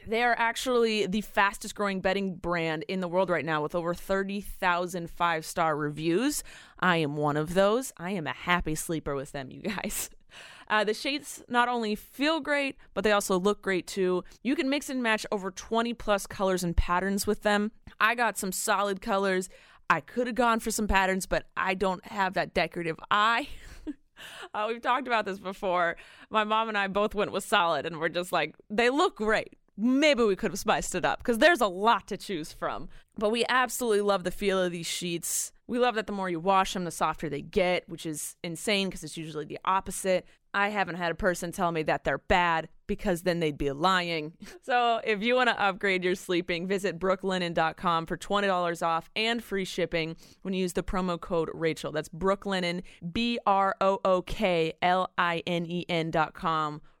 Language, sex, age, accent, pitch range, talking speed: English, female, 30-49, American, 170-215 Hz, 190 wpm